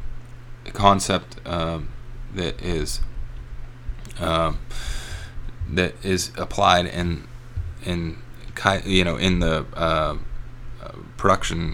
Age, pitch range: 30-49, 85-95 Hz